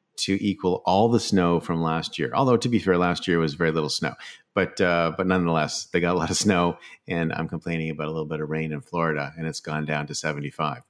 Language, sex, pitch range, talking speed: English, male, 85-105 Hz, 250 wpm